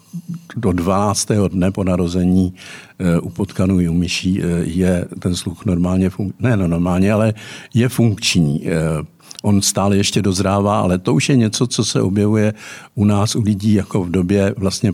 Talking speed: 160 wpm